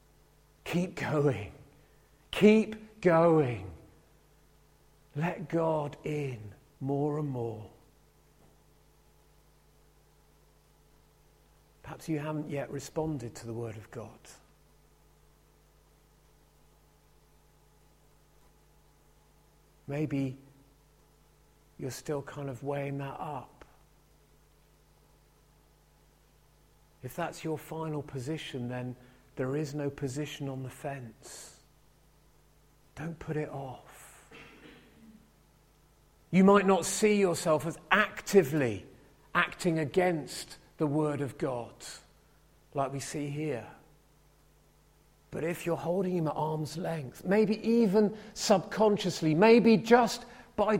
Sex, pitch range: male, 140-175 Hz